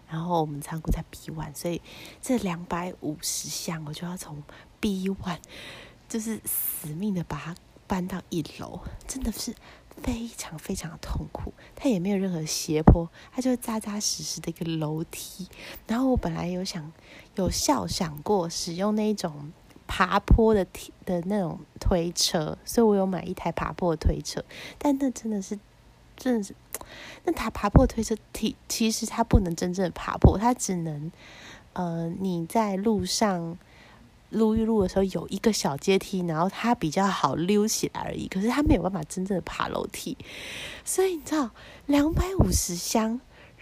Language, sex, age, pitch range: Chinese, female, 20-39, 170-220 Hz